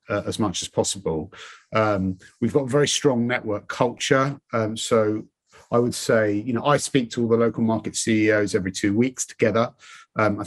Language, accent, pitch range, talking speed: English, British, 95-125 Hz, 195 wpm